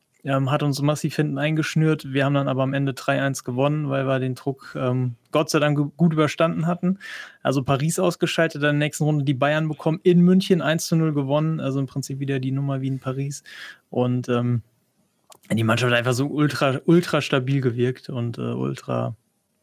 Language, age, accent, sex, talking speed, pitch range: German, 20-39, German, male, 195 wpm, 125-155 Hz